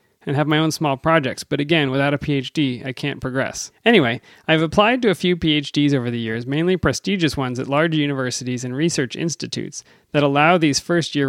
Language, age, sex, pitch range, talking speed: English, 30-49, male, 130-155 Hz, 195 wpm